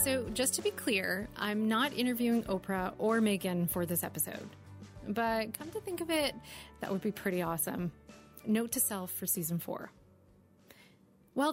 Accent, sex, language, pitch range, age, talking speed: American, female, English, 190-255 Hz, 30-49, 165 wpm